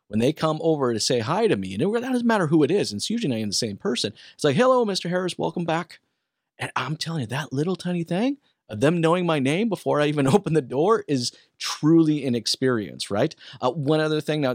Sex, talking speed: male, 255 wpm